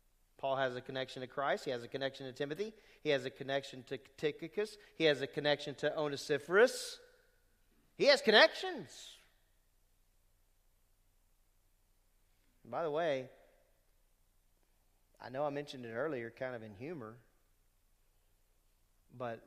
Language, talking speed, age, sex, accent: English, 130 wpm, 40-59, male, American